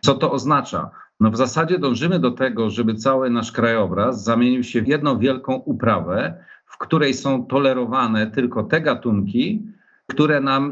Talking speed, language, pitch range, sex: 155 wpm, Polish, 110-135 Hz, male